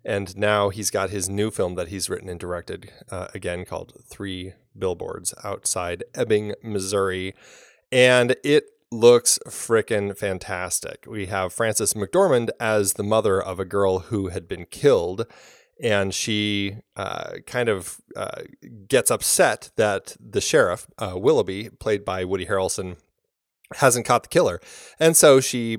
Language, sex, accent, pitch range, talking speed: English, male, American, 95-115 Hz, 145 wpm